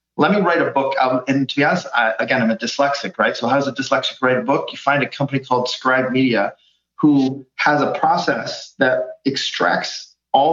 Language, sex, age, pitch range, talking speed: English, male, 30-49, 125-150 Hz, 210 wpm